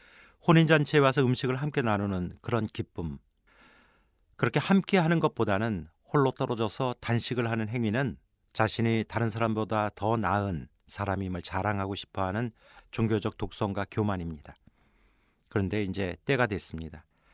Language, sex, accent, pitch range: Korean, male, native, 90-115 Hz